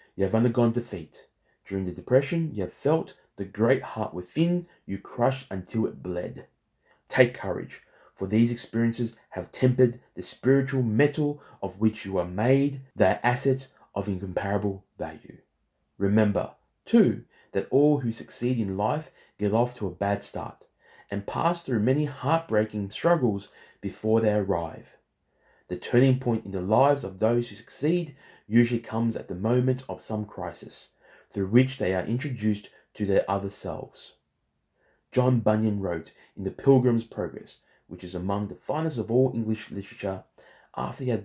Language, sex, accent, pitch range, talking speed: English, male, Australian, 100-130 Hz, 155 wpm